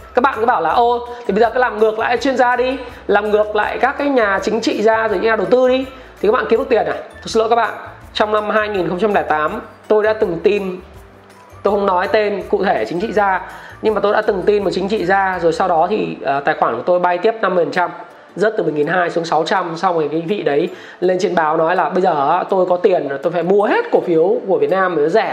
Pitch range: 185-240 Hz